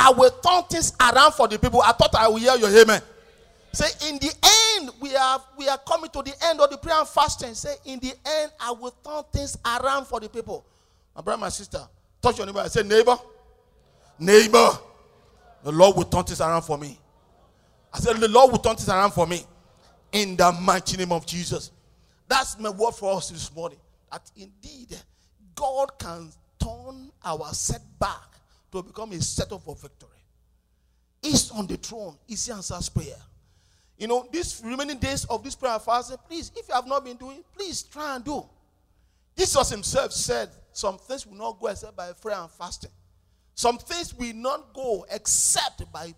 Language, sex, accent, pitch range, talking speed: English, male, Nigerian, 180-265 Hz, 195 wpm